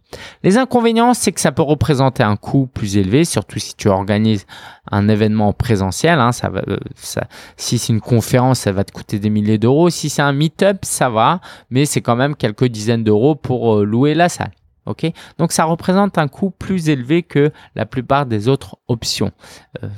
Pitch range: 105-150 Hz